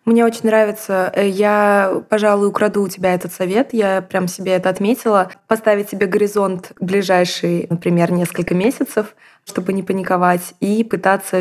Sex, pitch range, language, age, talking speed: female, 190-225 Hz, Russian, 20-39, 140 wpm